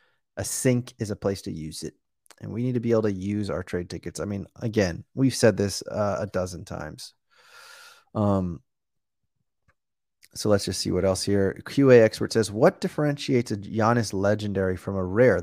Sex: male